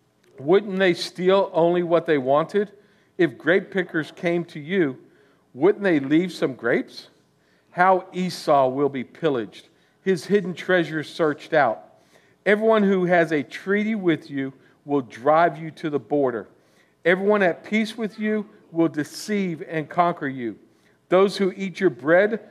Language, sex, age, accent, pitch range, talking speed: English, male, 50-69, American, 145-195 Hz, 150 wpm